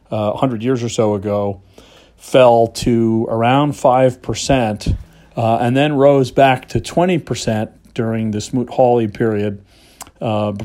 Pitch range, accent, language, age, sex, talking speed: 110-130 Hz, American, English, 40-59, male, 125 wpm